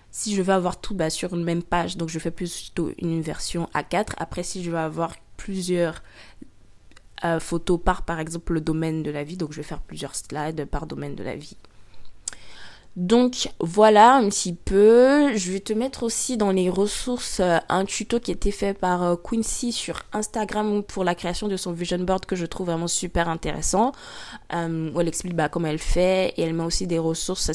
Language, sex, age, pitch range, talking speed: French, female, 20-39, 165-195 Hz, 205 wpm